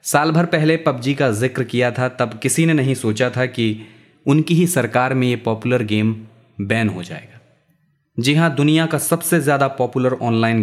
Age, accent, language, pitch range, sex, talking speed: 30-49, native, Hindi, 115-150 Hz, male, 185 wpm